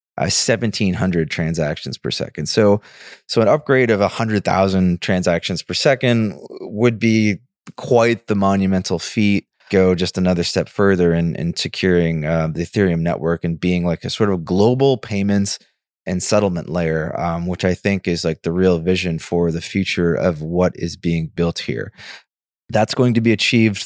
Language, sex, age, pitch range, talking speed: English, male, 20-39, 90-110 Hz, 165 wpm